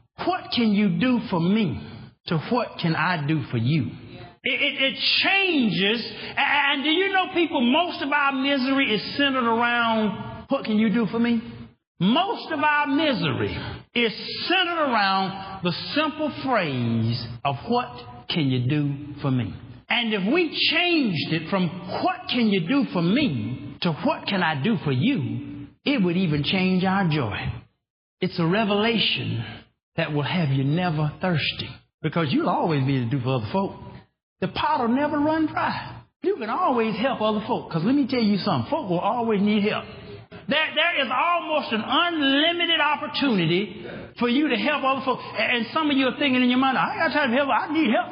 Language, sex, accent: English, male, American